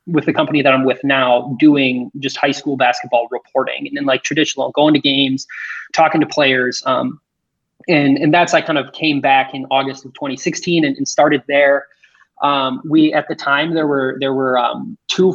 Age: 20-39